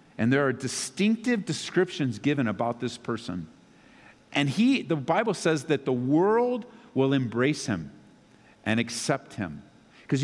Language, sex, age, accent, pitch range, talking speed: English, male, 50-69, American, 135-200 Hz, 140 wpm